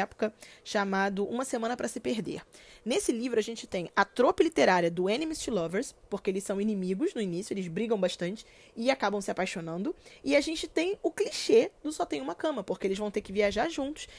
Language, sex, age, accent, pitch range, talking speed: Portuguese, female, 20-39, Brazilian, 195-255 Hz, 205 wpm